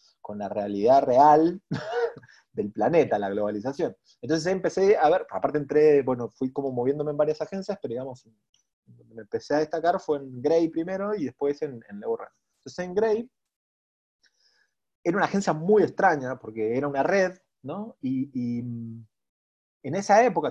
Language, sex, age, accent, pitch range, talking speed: English, male, 30-49, Argentinian, 120-170 Hz, 160 wpm